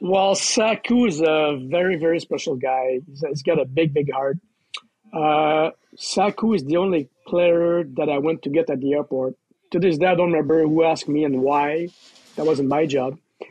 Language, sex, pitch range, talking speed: English, male, 150-180 Hz, 190 wpm